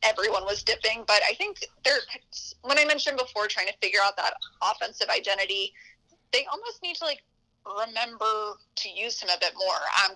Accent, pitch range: American, 195-265 Hz